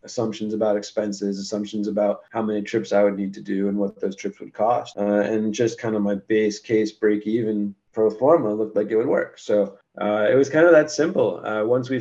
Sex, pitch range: male, 105-120 Hz